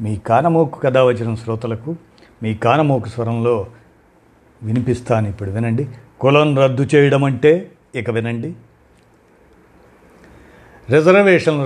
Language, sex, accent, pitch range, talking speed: Telugu, male, native, 115-150 Hz, 85 wpm